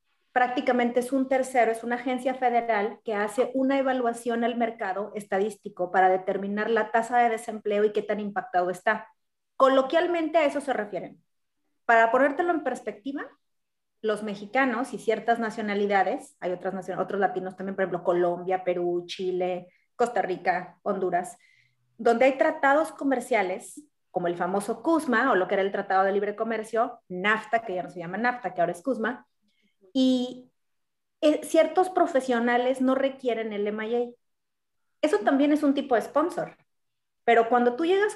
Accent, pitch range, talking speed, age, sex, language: Mexican, 205-260 Hz, 155 wpm, 30-49, female, Spanish